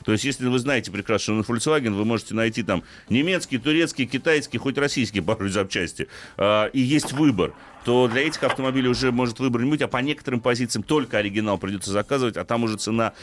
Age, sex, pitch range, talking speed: 30-49, male, 105-140 Hz, 195 wpm